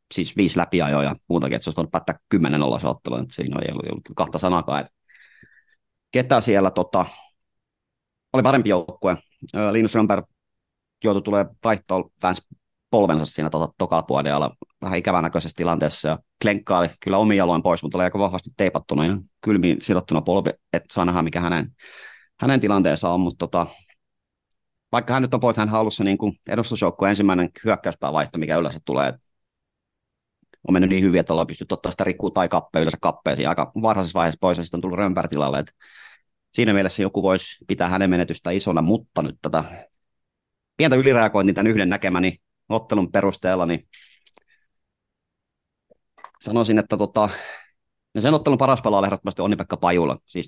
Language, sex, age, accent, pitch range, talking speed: Finnish, male, 30-49, native, 85-100 Hz, 150 wpm